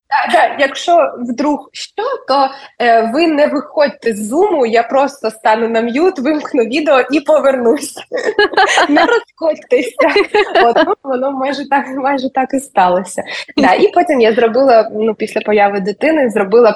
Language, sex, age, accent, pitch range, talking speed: Ukrainian, female, 20-39, native, 210-270 Hz, 135 wpm